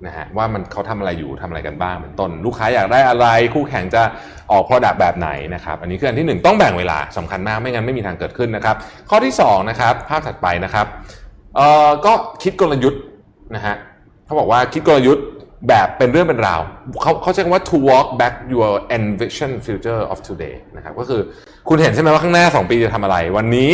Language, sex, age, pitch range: Thai, male, 20-39, 95-130 Hz